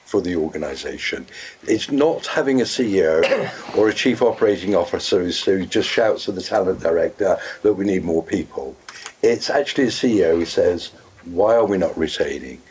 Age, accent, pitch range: 60-79, British, 95-140 Hz